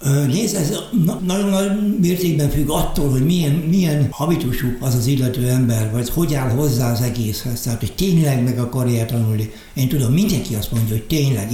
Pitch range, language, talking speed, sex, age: 125-155 Hz, Hungarian, 175 wpm, male, 60-79